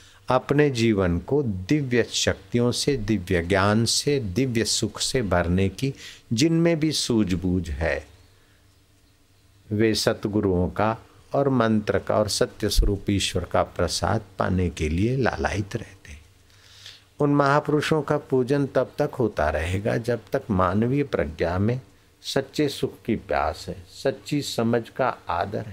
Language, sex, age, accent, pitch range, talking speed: Hindi, male, 60-79, native, 95-130 Hz, 135 wpm